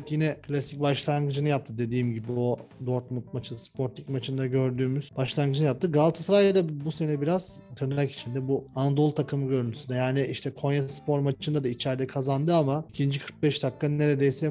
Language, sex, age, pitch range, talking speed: Turkish, male, 40-59, 130-150 Hz, 155 wpm